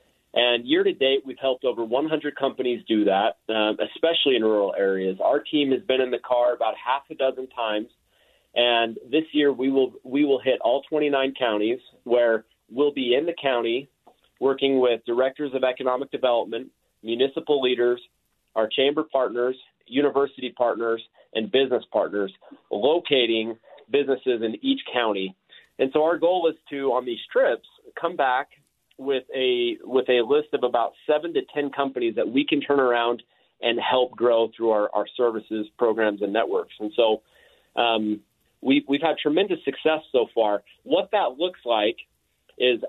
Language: English